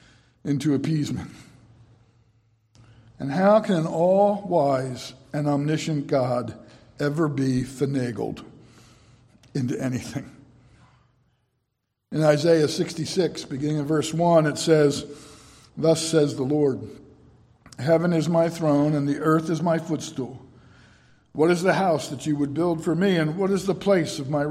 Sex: male